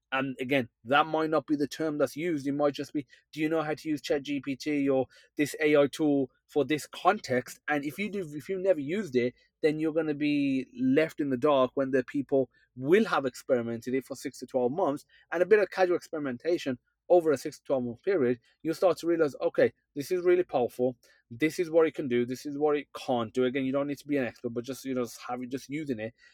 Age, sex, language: 30-49, male, English